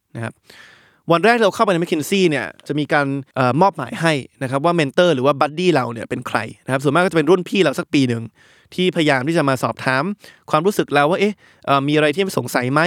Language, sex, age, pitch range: Thai, male, 20-39, 135-175 Hz